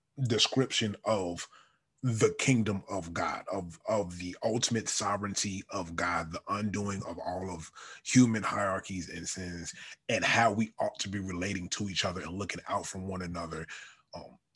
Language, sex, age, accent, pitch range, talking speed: English, male, 30-49, American, 95-115 Hz, 160 wpm